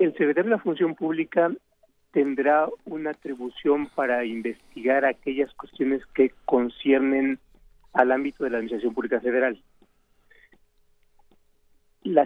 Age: 40-59